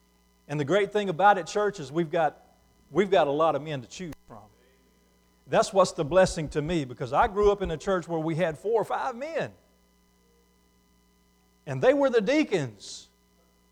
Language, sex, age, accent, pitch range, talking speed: English, male, 50-69, American, 160-225 Hz, 190 wpm